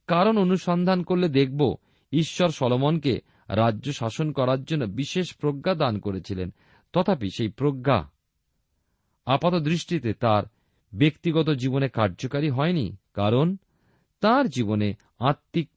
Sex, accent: male, native